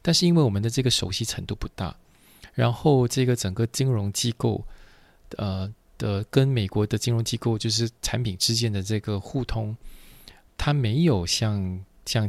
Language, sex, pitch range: Chinese, male, 100-125 Hz